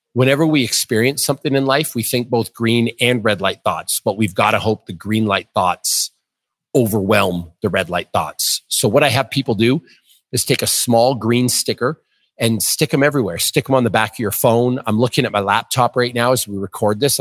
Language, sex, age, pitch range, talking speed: English, male, 40-59, 105-130 Hz, 220 wpm